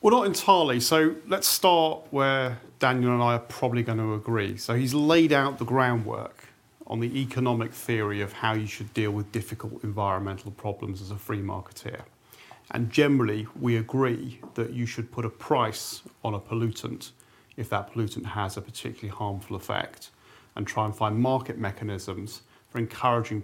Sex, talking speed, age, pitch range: male, 170 wpm, 40-59, 110-130 Hz